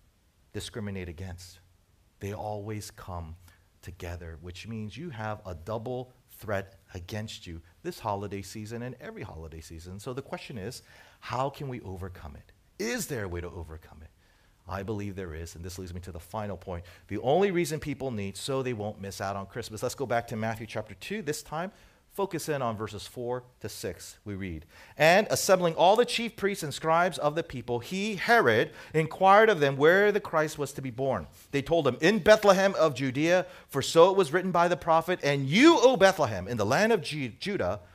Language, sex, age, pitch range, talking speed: English, male, 40-59, 95-150 Hz, 200 wpm